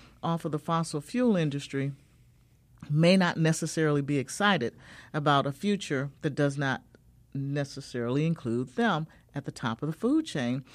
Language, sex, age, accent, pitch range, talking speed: English, male, 50-69, American, 130-170 Hz, 150 wpm